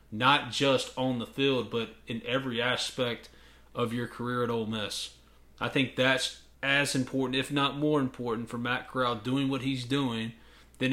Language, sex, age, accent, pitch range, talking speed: English, male, 30-49, American, 110-145 Hz, 175 wpm